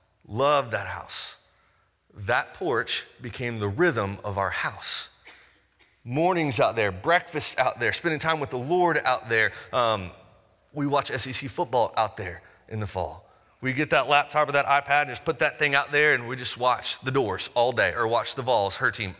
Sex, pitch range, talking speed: male, 95-130 Hz, 195 wpm